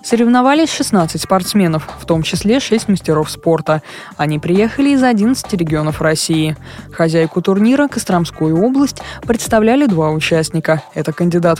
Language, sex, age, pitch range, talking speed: Russian, female, 20-39, 160-235 Hz, 125 wpm